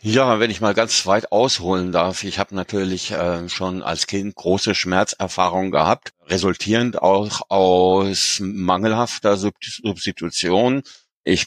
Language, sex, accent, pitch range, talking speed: German, male, German, 90-105 Hz, 125 wpm